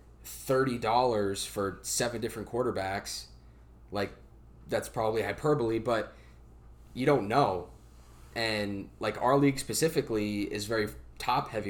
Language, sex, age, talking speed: English, male, 20-39, 115 wpm